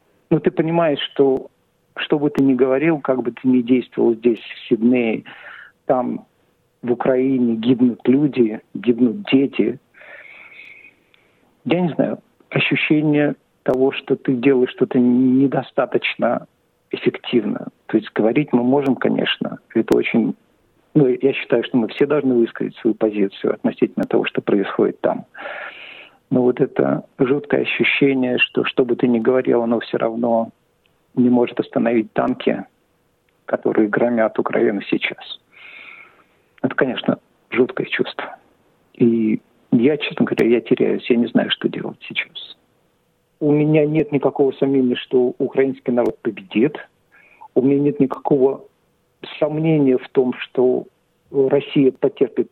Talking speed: 130 wpm